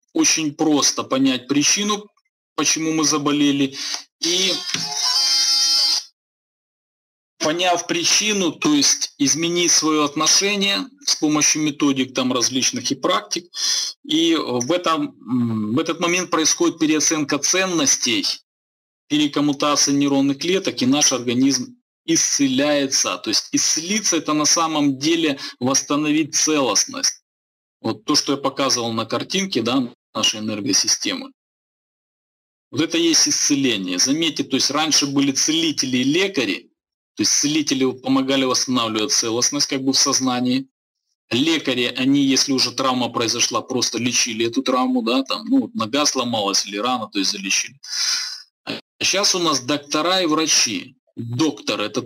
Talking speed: 120 wpm